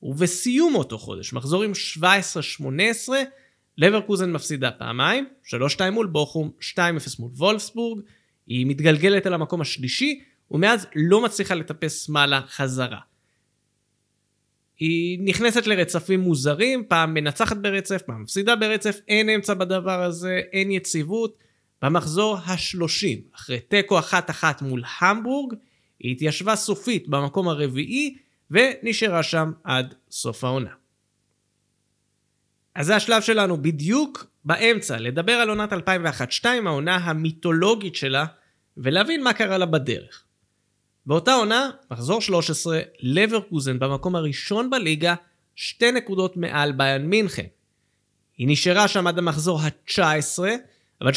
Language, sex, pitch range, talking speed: Hebrew, male, 135-210 Hz, 115 wpm